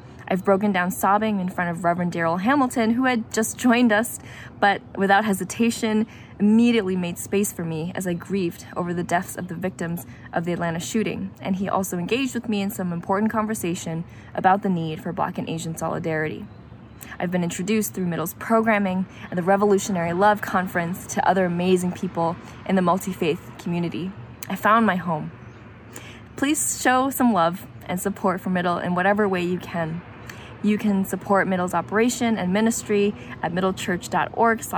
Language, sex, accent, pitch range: English, female, American, 170-210 Hz